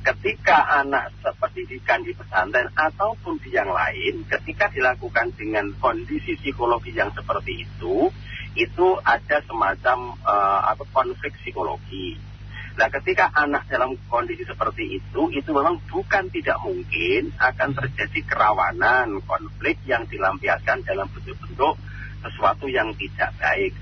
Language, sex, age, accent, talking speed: Indonesian, male, 40-59, native, 120 wpm